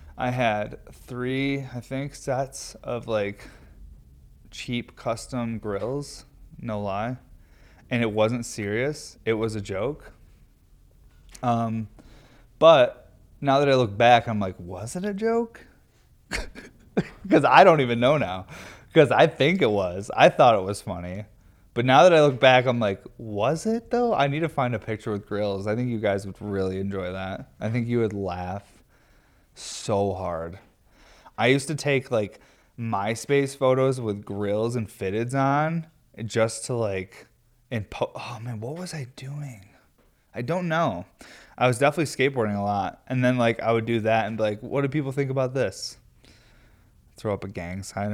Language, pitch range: English, 100-125 Hz